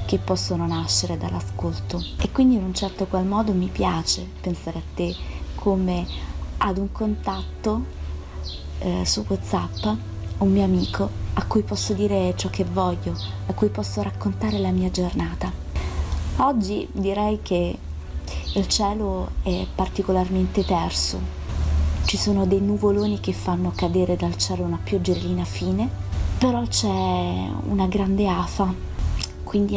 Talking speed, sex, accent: 135 wpm, female, native